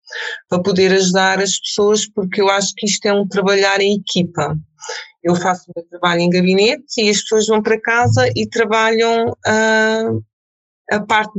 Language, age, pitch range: Portuguese, 20-39, 175-210 Hz